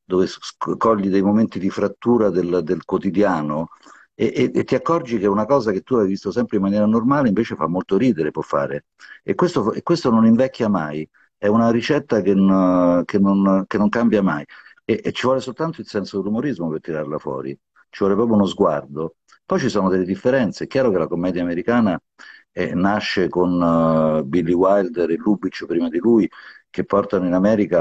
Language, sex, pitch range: Italian, male, 85-105 Hz